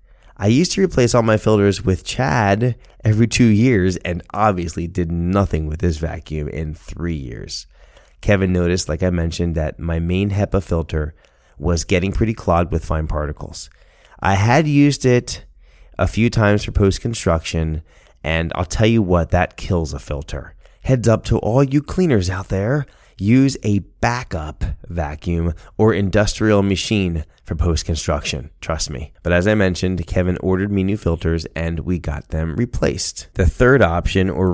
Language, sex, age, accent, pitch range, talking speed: English, male, 30-49, American, 85-100 Hz, 165 wpm